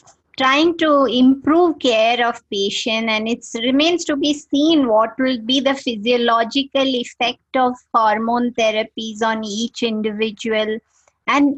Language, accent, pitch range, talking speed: English, Indian, 230-280 Hz, 130 wpm